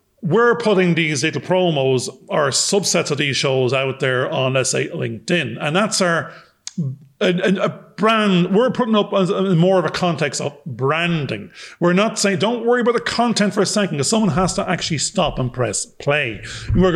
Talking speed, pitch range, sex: 190 wpm, 150-195 Hz, male